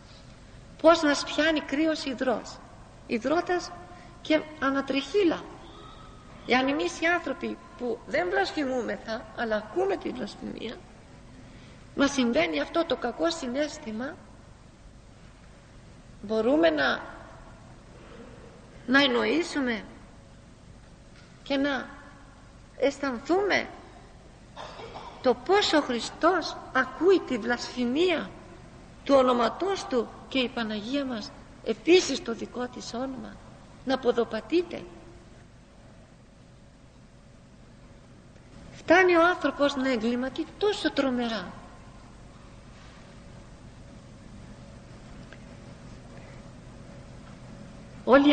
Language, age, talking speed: English, 50-69, 75 wpm